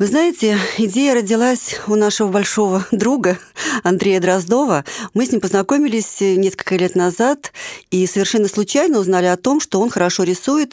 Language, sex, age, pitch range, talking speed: Russian, female, 40-59, 175-240 Hz, 150 wpm